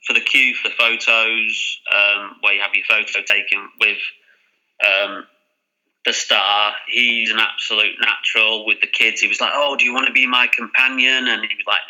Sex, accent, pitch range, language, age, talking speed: male, British, 105-120 Hz, English, 30-49, 195 wpm